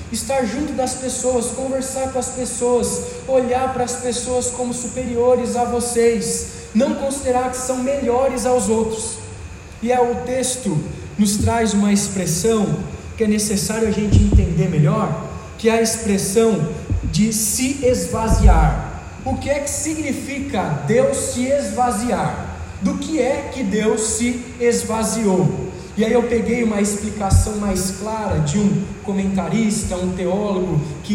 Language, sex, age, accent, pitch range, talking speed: Portuguese, male, 20-39, Brazilian, 195-250 Hz, 140 wpm